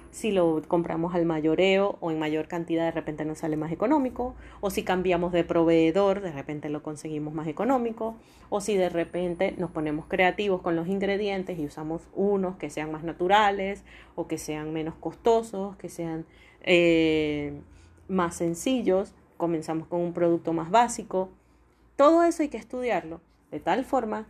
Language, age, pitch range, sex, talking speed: Spanish, 30-49, 165-220 Hz, female, 165 wpm